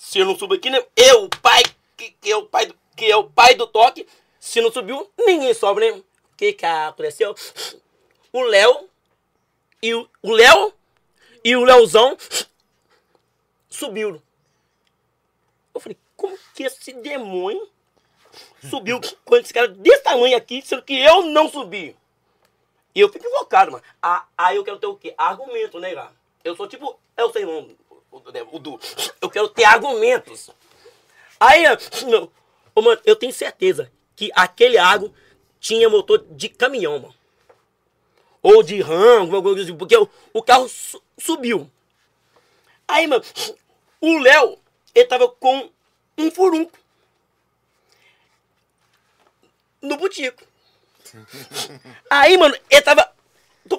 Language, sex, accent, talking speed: Portuguese, male, Brazilian, 135 wpm